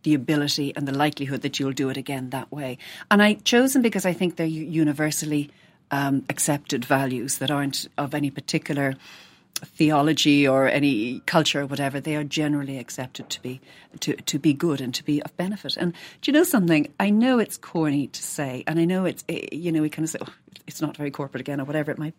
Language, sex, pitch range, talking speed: English, female, 140-185 Hz, 220 wpm